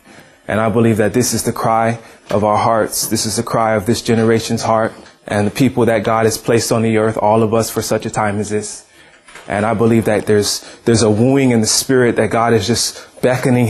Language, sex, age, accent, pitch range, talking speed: English, male, 20-39, American, 110-125 Hz, 235 wpm